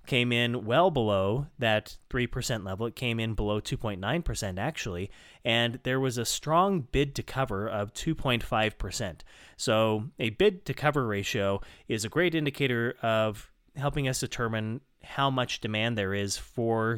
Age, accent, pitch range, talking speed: 30-49, American, 105-140 Hz, 150 wpm